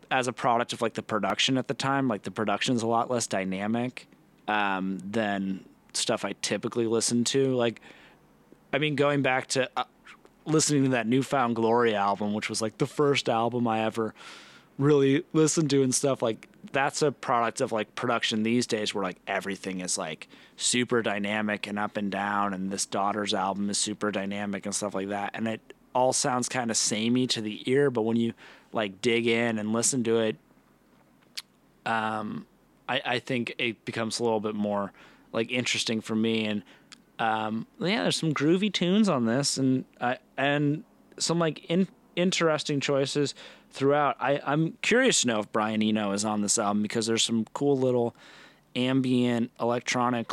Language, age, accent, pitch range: English, 20-39, American, 105-130 Hz